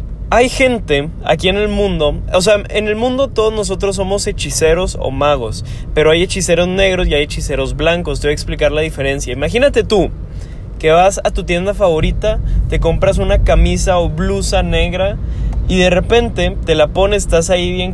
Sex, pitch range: male, 150-200 Hz